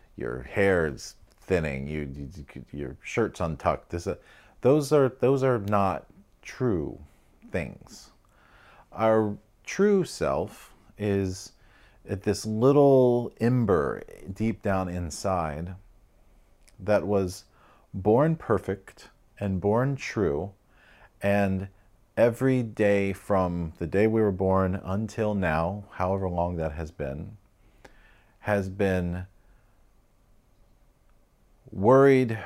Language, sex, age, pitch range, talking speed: English, male, 40-59, 90-110 Hz, 100 wpm